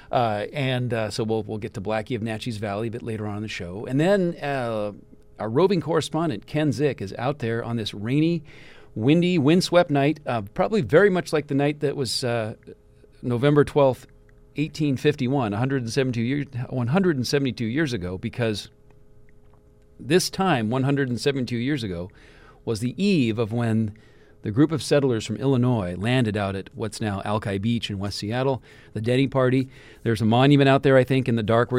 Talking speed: 205 wpm